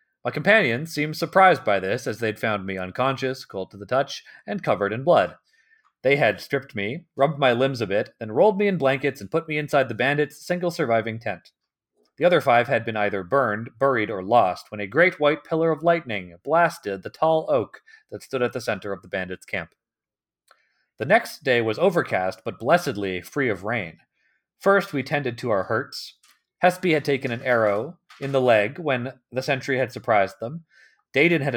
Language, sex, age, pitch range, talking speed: English, male, 30-49, 105-150 Hz, 200 wpm